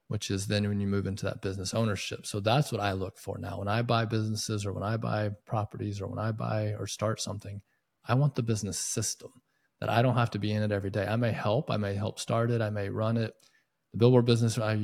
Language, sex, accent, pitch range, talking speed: English, male, American, 100-115 Hz, 265 wpm